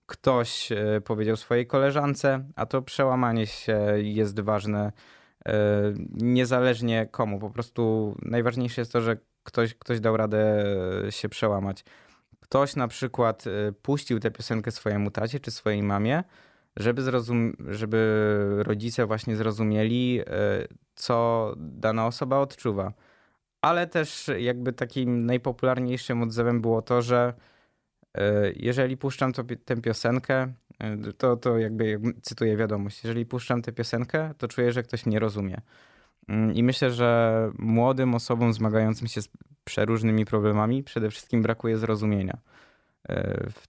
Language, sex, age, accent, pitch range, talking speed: Polish, male, 20-39, native, 110-125 Hz, 120 wpm